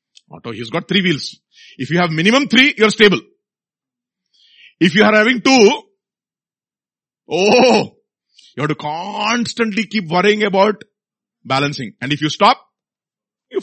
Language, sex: English, male